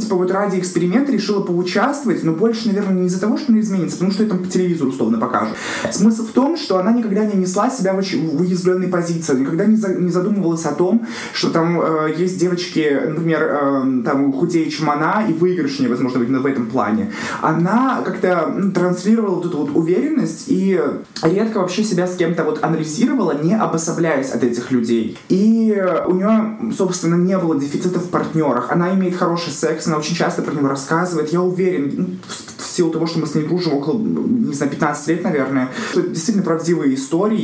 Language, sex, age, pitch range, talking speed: Russian, male, 20-39, 160-205 Hz, 190 wpm